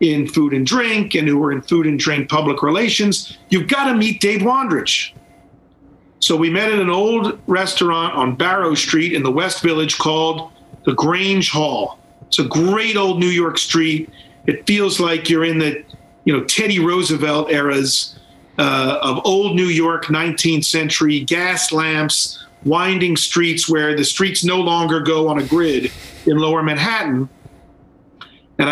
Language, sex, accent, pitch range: English, male, American, 155-185 Hz